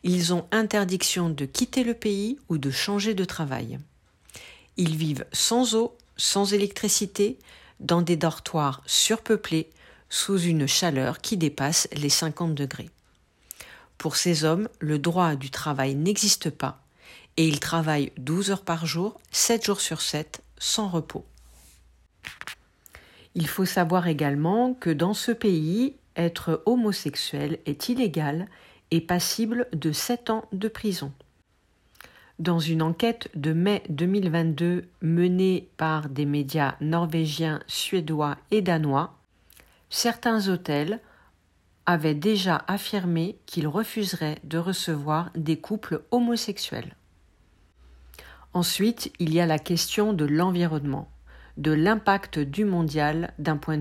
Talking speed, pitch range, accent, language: 125 wpm, 145-200 Hz, French, French